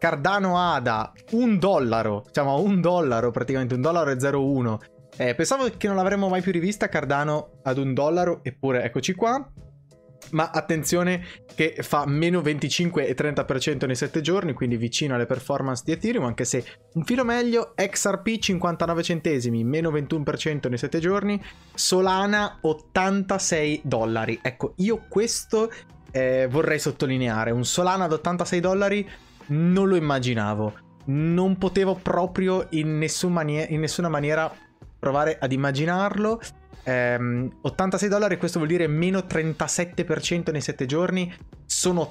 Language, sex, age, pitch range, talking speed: Italian, male, 20-39, 130-185 Hz, 140 wpm